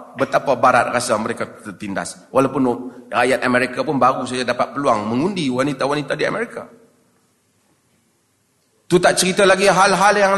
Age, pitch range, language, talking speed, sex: 40-59, 140-220 Hz, Malay, 140 wpm, male